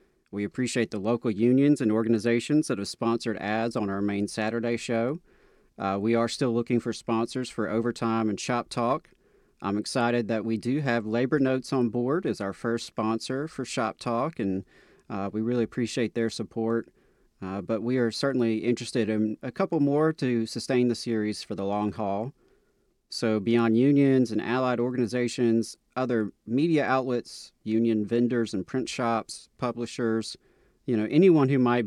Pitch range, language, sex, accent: 105-120 Hz, English, male, American